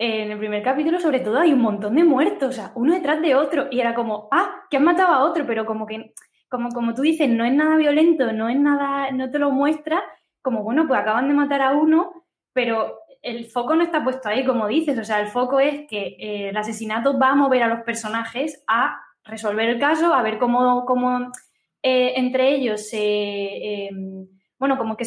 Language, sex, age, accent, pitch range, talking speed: Spanish, female, 10-29, Spanish, 220-275 Hz, 225 wpm